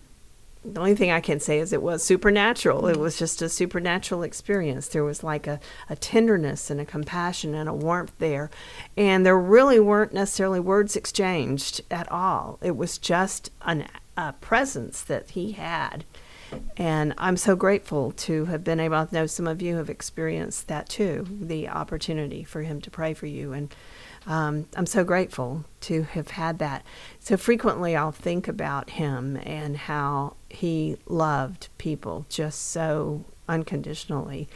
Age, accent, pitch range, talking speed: 40-59, American, 150-185 Hz, 165 wpm